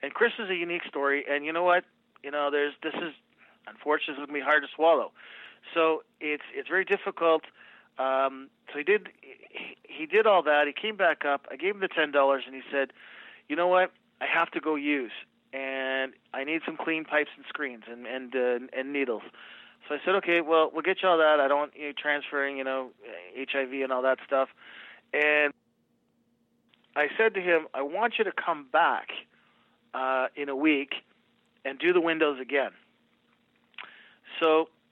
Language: English